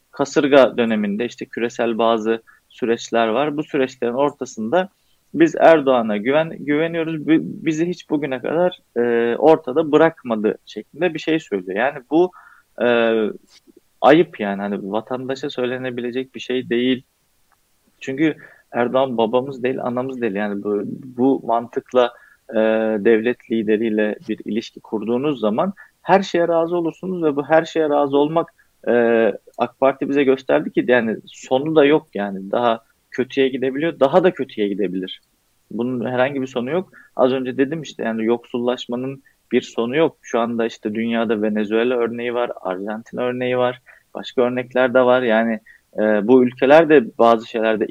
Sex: male